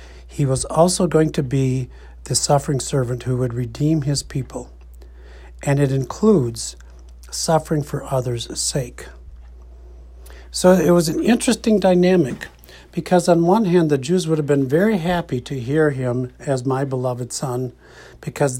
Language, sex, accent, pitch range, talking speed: English, male, American, 115-160 Hz, 150 wpm